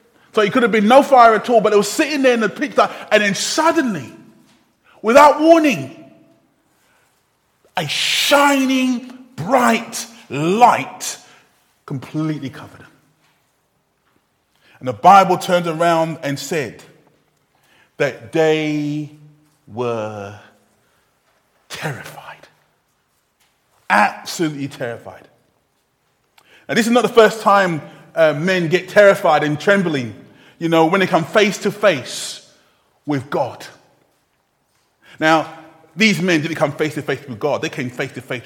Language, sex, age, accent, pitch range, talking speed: English, male, 30-49, British, 140-215 Hz, 115 wpm